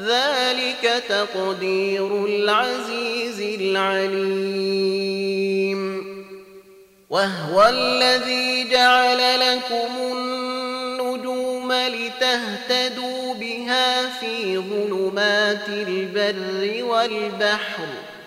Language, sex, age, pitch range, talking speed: Arabic, male, 30-49, 195-255 Hz, 50 wpm